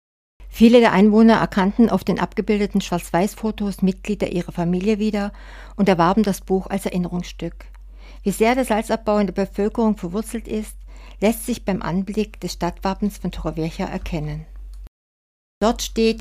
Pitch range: 170-210 Hz